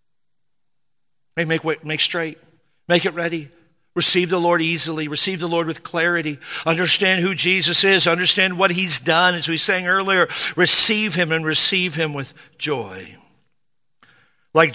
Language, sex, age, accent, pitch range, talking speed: English, male, 50-69, American, 155-185 Hz, 140 wpm